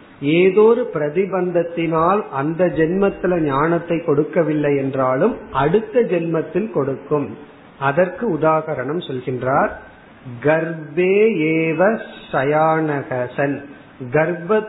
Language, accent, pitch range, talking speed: Tamil, native, 145-190 Hz, 55 wpm